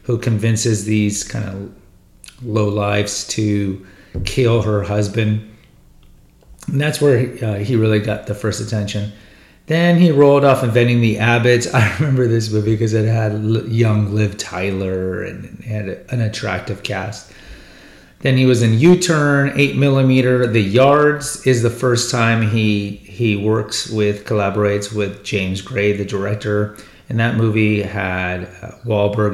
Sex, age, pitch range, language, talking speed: male, 30-49, 105-125 Hz, English, 145 wpm